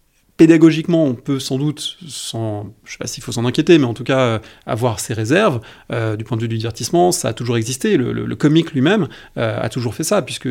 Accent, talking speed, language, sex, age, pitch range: French, 250 wpm, French, male, 30-49, 110-140 Hz